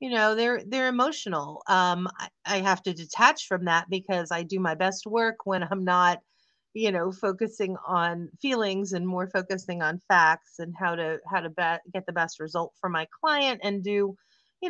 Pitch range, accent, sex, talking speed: 180-230 Hz, American, female, 190 wpm